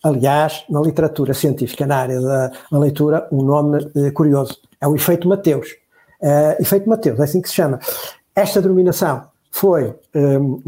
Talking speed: 165 wpm